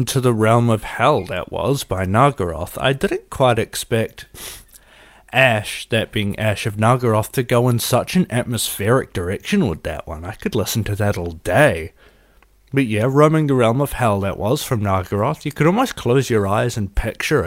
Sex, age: male, 30-49